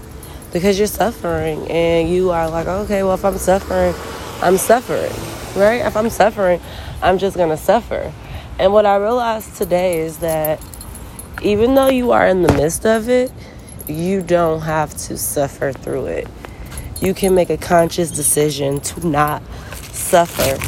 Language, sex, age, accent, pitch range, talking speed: English, female, 20-39, American, 155-195 Hz, 160 wpm